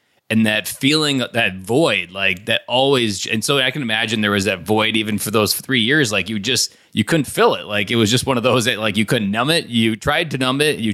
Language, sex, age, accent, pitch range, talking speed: English, male, 20-39, American, 105-120 Hz, 265 wpm